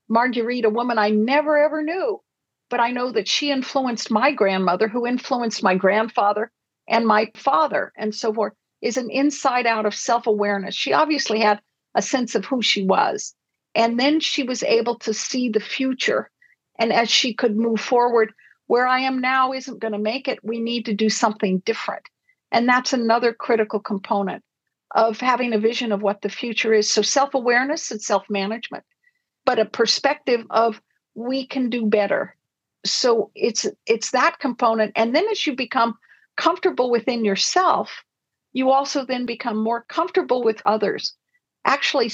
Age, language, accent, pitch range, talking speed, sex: 50-69, English, American, 215-265 Hz, 170 wpm, female